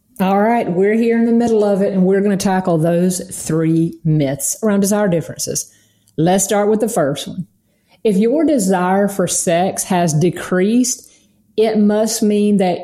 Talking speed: 175 wpm